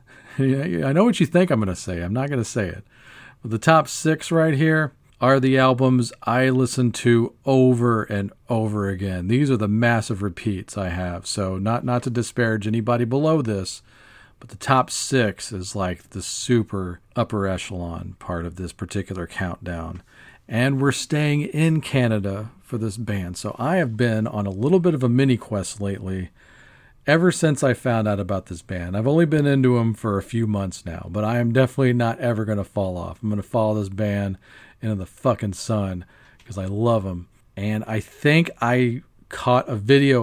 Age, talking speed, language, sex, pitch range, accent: 40-59, 195 wpm, English, male, 100-125 Hz, American